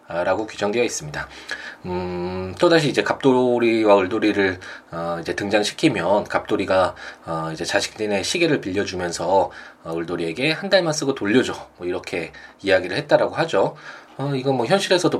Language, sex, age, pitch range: Korean, male, 20-39, 90-140 Hz